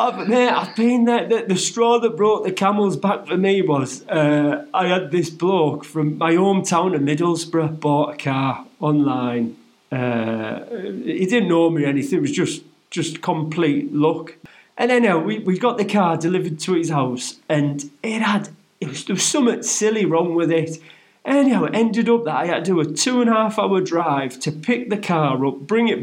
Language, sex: English, male